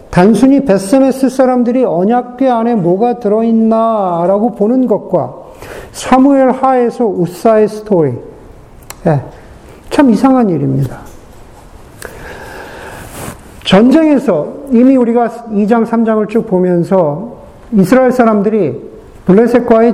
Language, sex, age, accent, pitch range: Korean, male, 50-69, native, 165-230 Hz